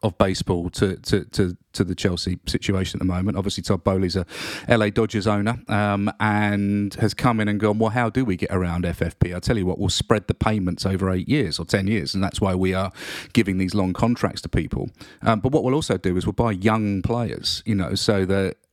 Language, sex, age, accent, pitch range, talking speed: English, male, 40-59, British, 95-125 Hz, 235 wpm